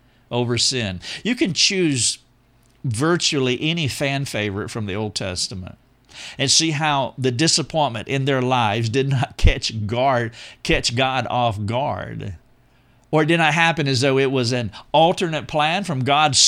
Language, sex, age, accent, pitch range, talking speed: English, male, 50-69, American, 115-145 Hz, 155 wpm